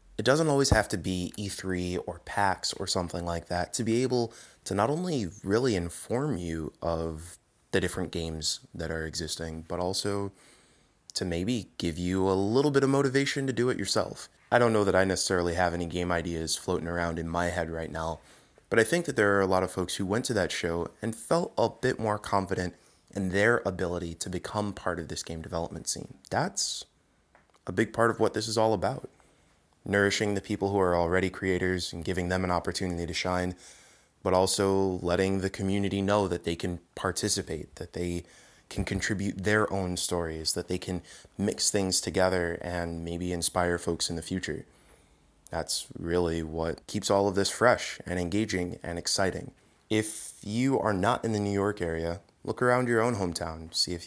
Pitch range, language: 85-100 Hz, English